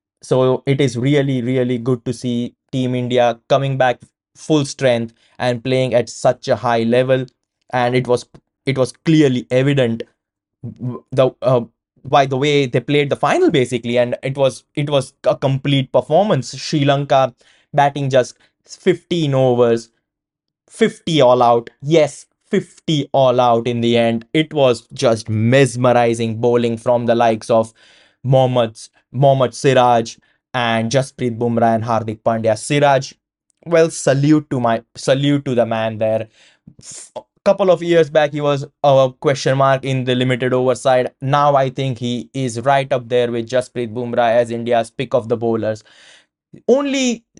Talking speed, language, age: 155 wpm, English, 20-39